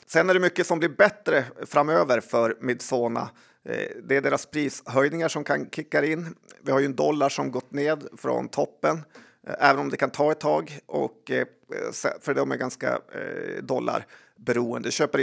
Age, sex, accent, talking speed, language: 30-49, male, native, 170 wpm, Swedish